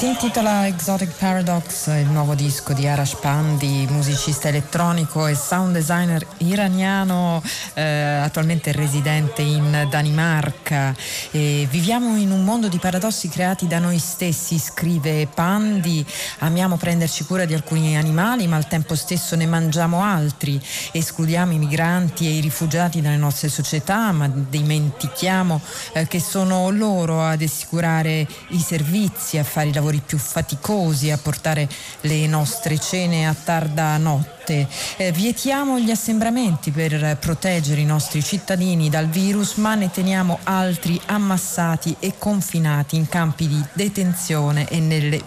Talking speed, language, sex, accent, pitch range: 135 wpm, Italian, female, native, 150-180 Hz